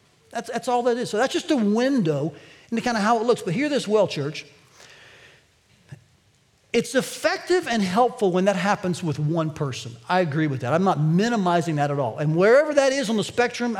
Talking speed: 210 wpm